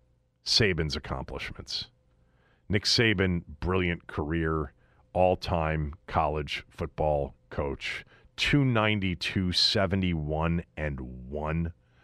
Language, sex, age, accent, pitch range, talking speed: English, male, 40-59, American, 80-115 Hz, 75 wpm